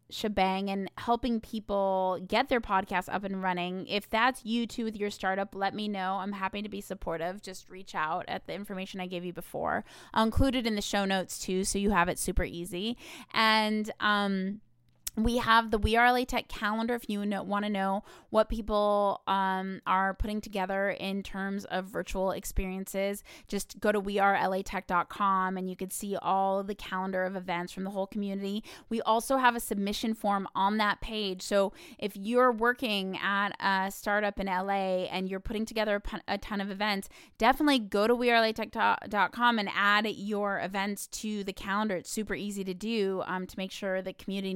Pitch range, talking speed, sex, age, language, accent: 190-220 Hz, 190 wpm, female, 20-39, English, American